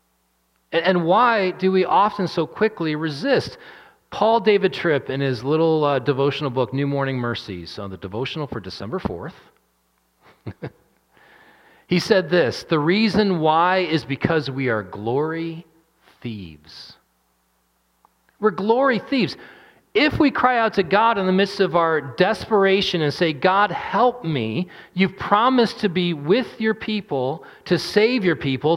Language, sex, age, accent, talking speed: English, male, 40-59, American, 145 wpm